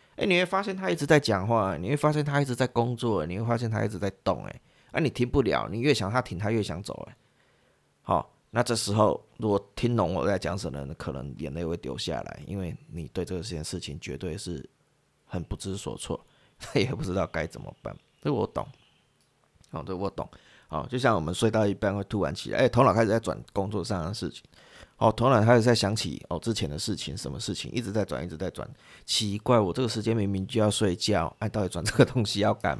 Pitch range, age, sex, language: 95-120 Hz, 30-49, male, Chinese